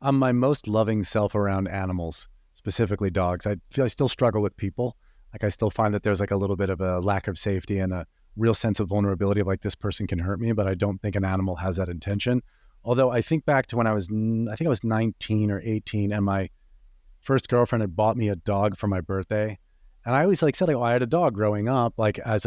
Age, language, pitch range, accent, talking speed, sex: 30-49, English, 100-120 Hz, American, 255 wpm, male